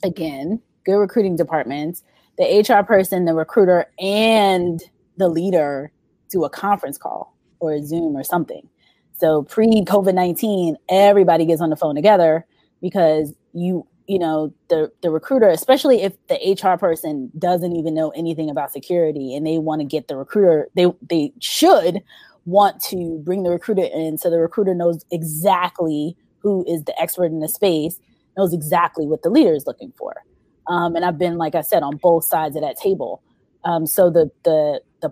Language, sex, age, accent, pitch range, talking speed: English, female, 20-39, American, 155-195 Hz, 175 wpm